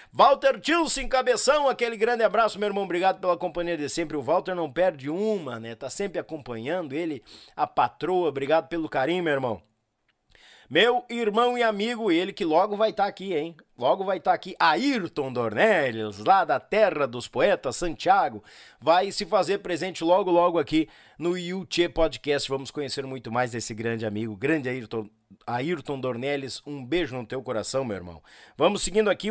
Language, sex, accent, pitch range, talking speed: Portuguese, male, Brazilian, 130-210 Hz, 175 wpm